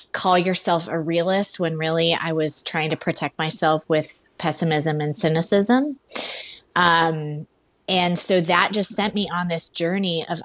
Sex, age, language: female, 20-39, English